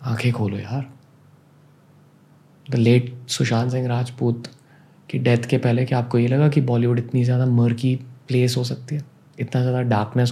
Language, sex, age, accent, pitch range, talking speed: Hindi, male, 20-39, native, 120-150 Hz, 175 wpm